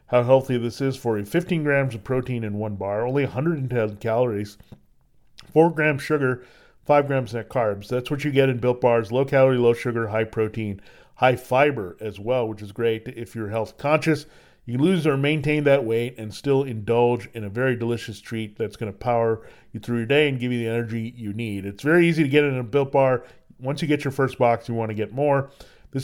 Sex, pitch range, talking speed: male, 110-140 Hz, 225 wpm